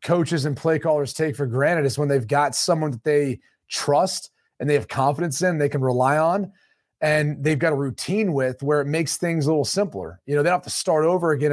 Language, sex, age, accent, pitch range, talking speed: English, male, 30-49, American, 135-165 Hz, 240 wpm